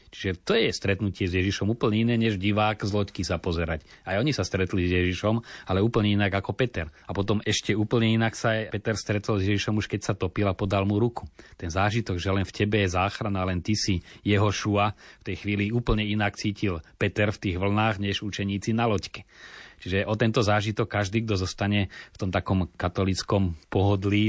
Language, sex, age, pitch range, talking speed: Slovak, male, 30-49, 95-110 Hz, 205 wpm